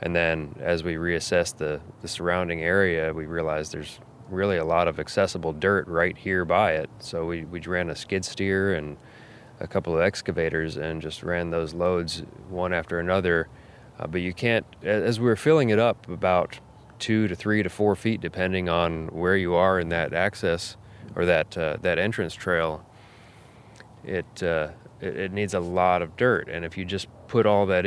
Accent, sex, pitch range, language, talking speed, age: American, male, 80-95 Hz, English, 190 wpm, 30-49